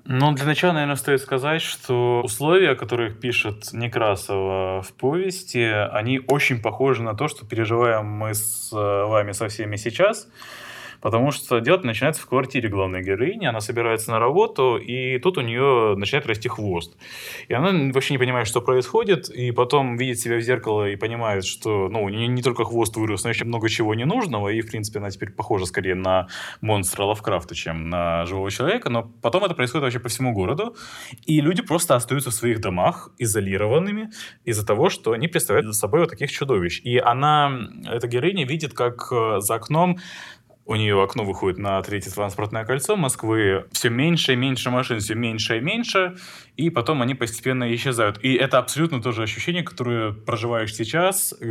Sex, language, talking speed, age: male, Russian, 180 wpm, 20-39